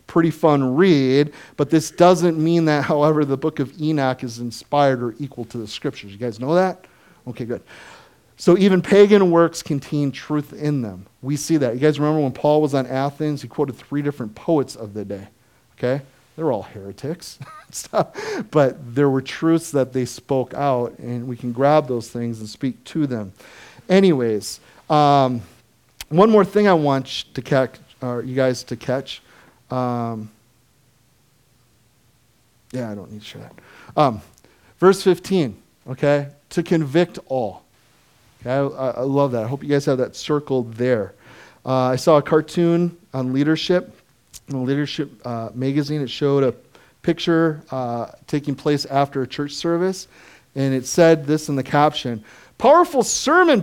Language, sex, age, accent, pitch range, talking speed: English, male, 40-59, American, 125-160 Hz, 165 wpm